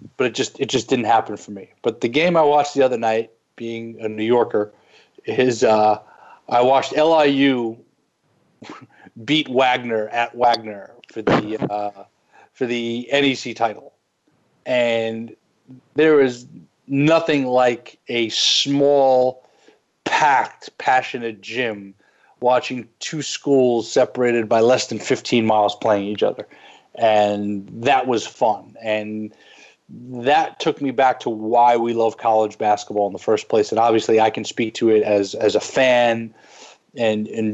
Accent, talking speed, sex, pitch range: American, 145 wpm, male, 110-130 Hz